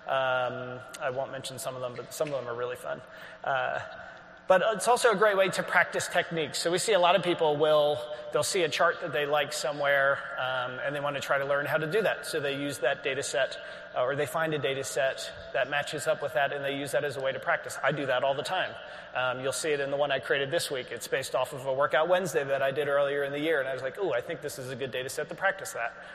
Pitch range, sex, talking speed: 135-165 Hz, male, 285 wpm